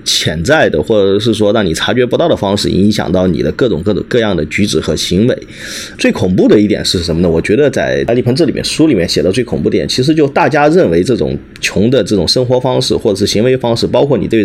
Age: 30-49